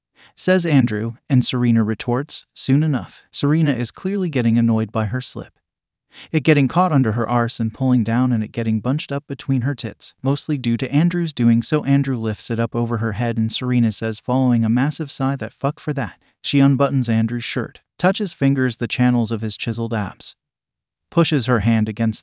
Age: 30-49